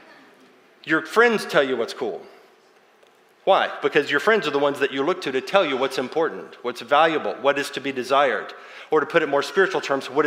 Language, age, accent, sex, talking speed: English, 40-59, American, male, 215 wpm